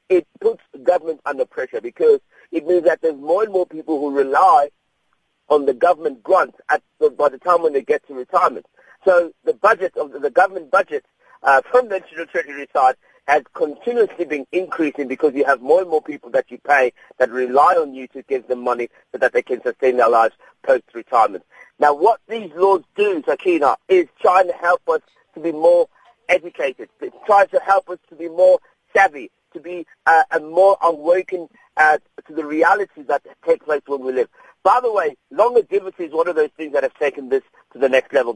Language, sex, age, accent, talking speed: English, male, 50-69, British, 205 wpm